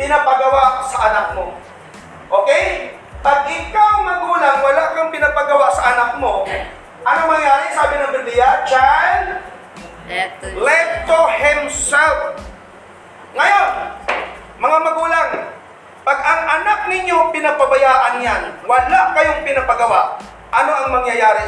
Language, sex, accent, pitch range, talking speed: Filipino, male, native, 240-325 Hz, 105 wpm